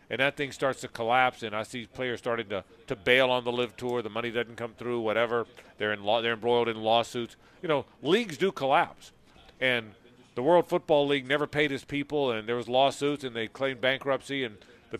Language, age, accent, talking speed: English, 40-59, American, 220 wpm